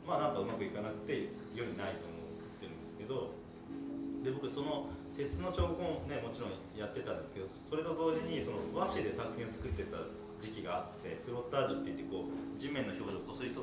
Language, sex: Japanese, male